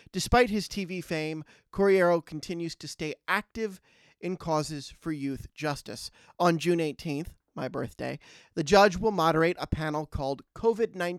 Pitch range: 140-175 Hz